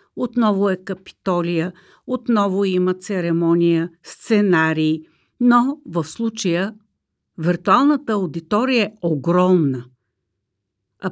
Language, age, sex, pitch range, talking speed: Bulgarian, 50-69, female, 165-255 Hz, 80 wpm